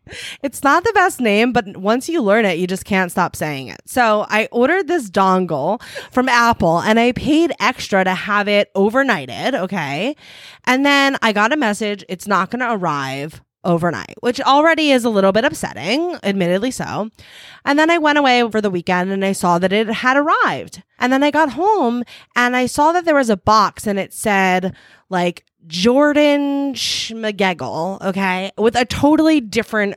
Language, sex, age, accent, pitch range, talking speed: English, female, 20-39, American, 190-270 Hz, 185 wpm